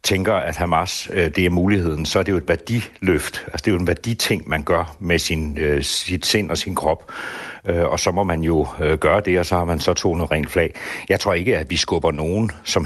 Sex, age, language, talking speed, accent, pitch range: male, 60-79, Danish, 235 wpm, native, 80-105 Hz